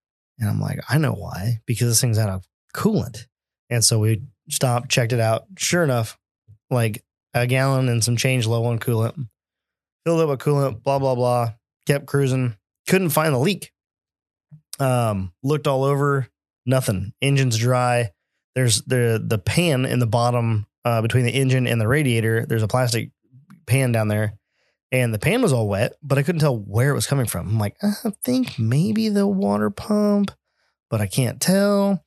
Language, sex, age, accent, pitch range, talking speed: English, male, 20-39, American, 110-140 Hz, 180 wpm